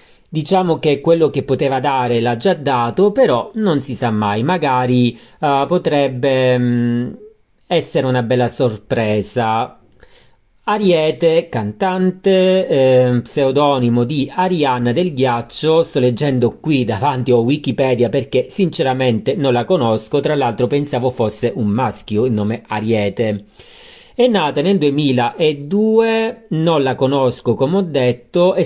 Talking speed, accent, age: 125 wpm, native, 40-59